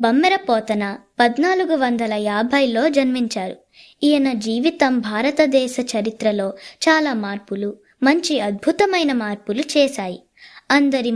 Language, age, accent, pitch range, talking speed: Telugu, 20-39, native, 210-290 Hz, 90 wpm